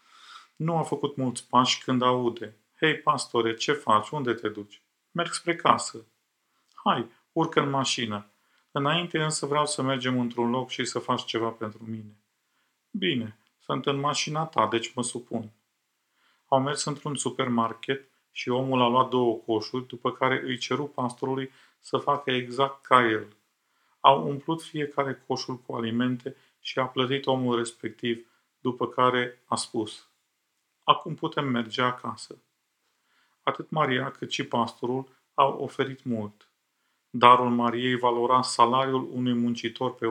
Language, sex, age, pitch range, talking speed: Romanian, male, 40-59, 115-135 Hz, 145 wpm